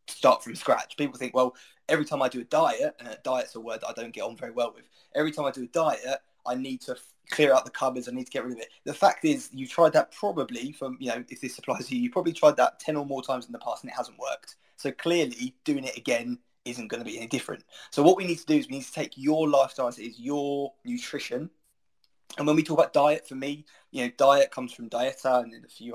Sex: male